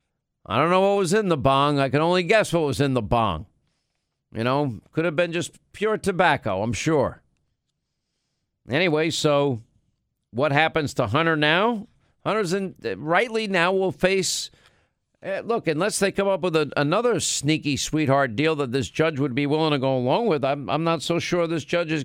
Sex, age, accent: male, 50-69, American